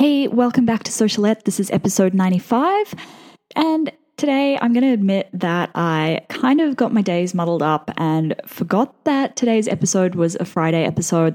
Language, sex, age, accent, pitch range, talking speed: English, female, 10-29, Australian, 165-220 Hz, 175 wpm